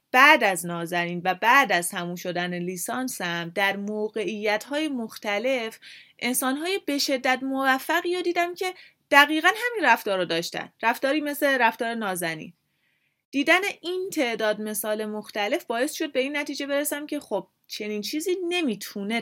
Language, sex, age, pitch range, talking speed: Persian, female, 30-49, 190-275 Hz, 140 wpm